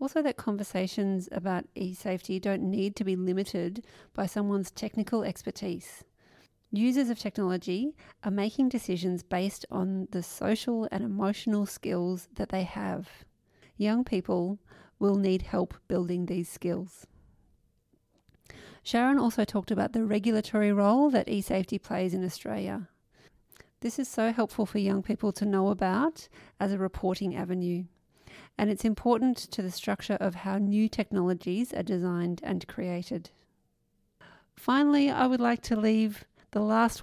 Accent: Australian